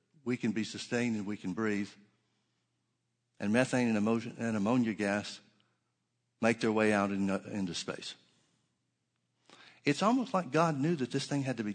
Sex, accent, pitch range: male, American, 100-125 Hz